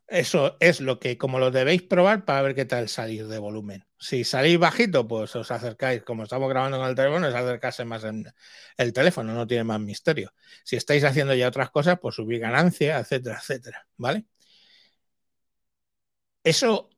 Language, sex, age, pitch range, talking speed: Spanish, male, 60-79, 120-150 Hz, 175 wpm